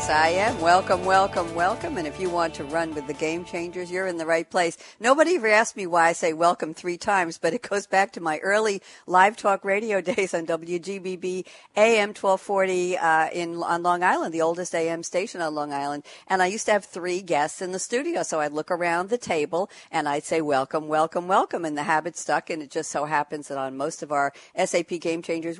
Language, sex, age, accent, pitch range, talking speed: English, female, 60-79, American, 155-205 Hz, 225 wpm